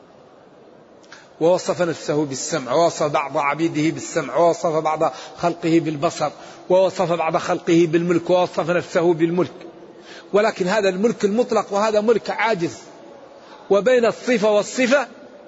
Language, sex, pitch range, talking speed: Arabic, male, 165-200 Hz, 110 wpm